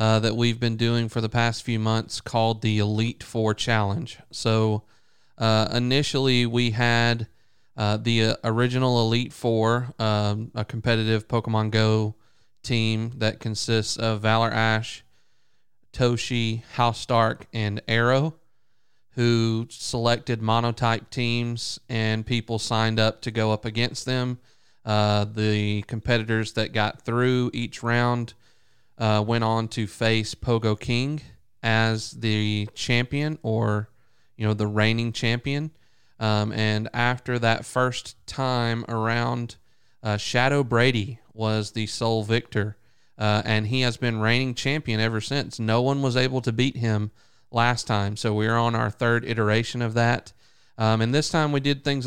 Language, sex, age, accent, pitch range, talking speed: English, male, 30-49, American, 110-120 Hz, 145 wpm